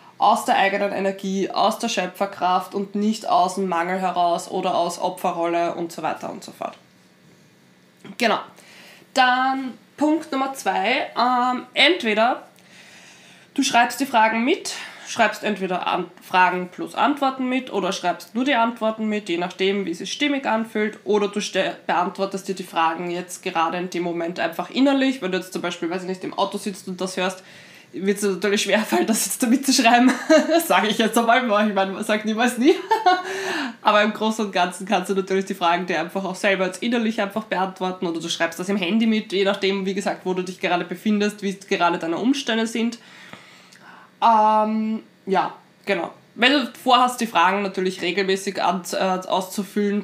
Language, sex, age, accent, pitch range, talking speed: German, female, 20-39, German, 185-225 Hz, 185 wpm